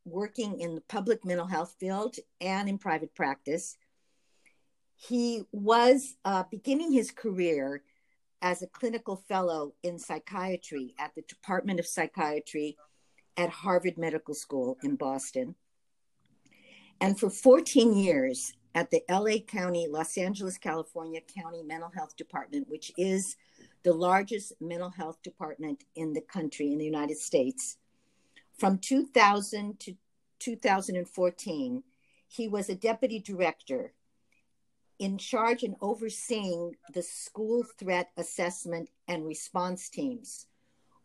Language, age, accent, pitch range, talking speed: English, 60-79, American, 165-215 Hz, 120 wpm